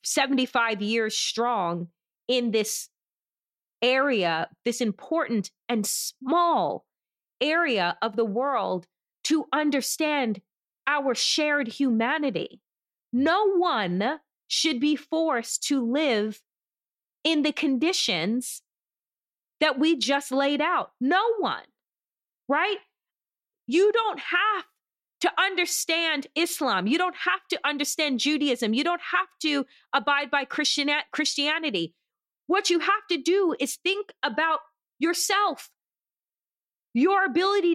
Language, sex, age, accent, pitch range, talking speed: English, female, 30-49, American, 250-350 Hz, 105 wpm